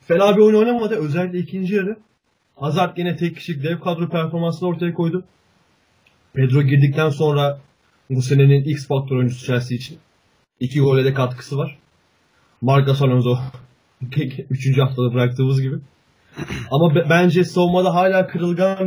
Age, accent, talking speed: 30-49, native, 140 wpm